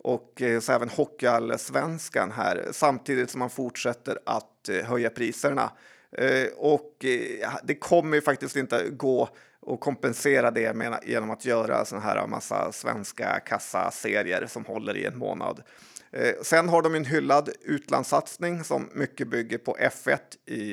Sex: male